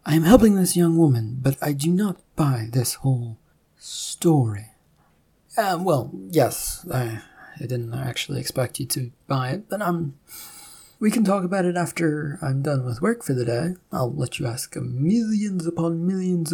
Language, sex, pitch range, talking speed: English, male, 125-165 Hz, 170 wpm